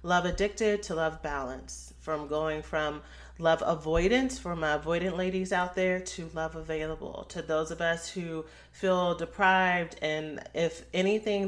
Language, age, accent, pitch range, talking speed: English, 30-49, American, 150-175 Hz, 150 wpm